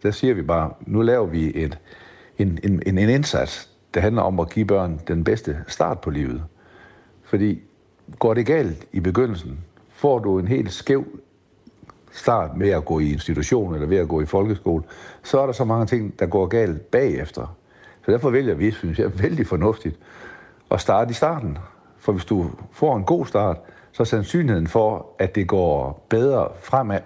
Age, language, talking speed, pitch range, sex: 60-79, Danish, 185 wpm, 85-110 Hz, male